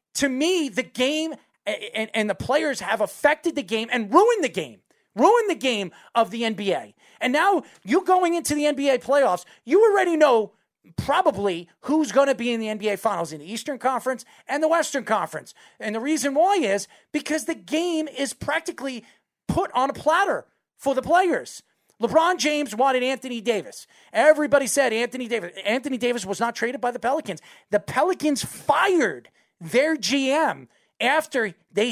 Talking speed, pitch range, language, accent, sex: 170 wpm, 230-315 Hz, English, American, male